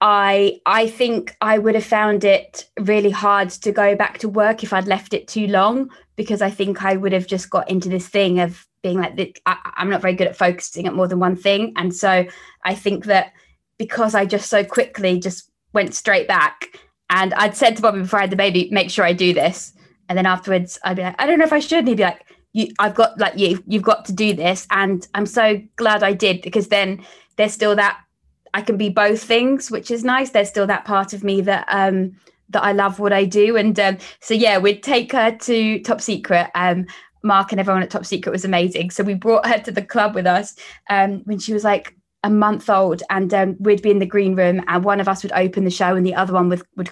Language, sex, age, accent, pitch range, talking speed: English, female, 20-39, British, 185-215 Hz, 245 wpm